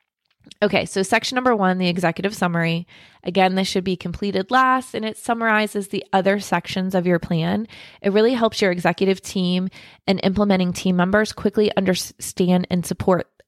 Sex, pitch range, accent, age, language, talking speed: female, 180-215 Hz, American, 20-39, English, 165 wpm